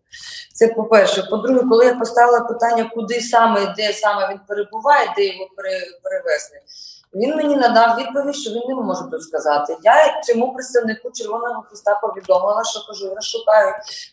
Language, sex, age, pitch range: Ukrainian, female, 20-39, 200-250 Hz